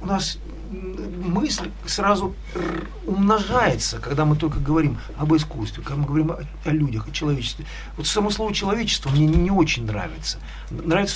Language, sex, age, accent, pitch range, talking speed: Russian, male, 50-69, native, 120-170 Hz, 145 wpm